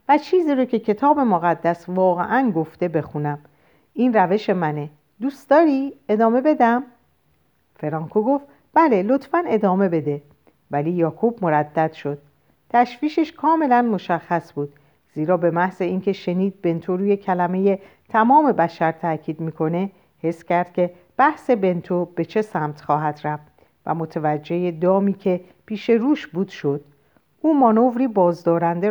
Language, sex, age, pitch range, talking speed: Persian, female, 50-69, 165-235 Hz, 130 wpm